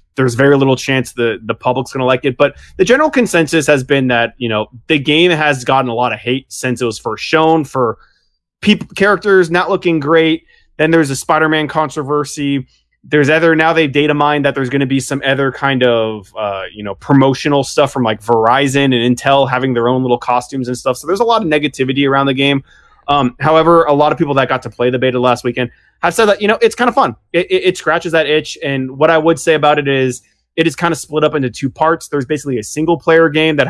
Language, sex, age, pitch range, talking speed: English, male, 20-39, 125-155 Hz, 245 wpm